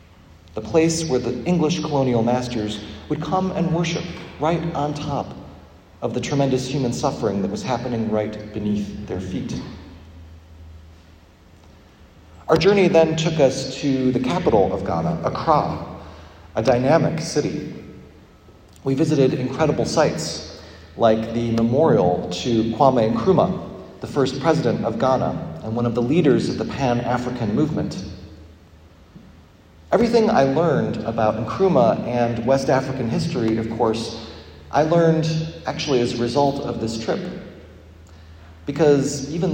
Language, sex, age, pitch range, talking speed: English, male, 40-59, 85-140 Hz, 130 wpm